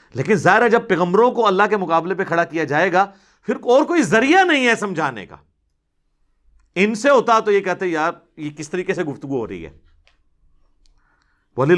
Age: 50-69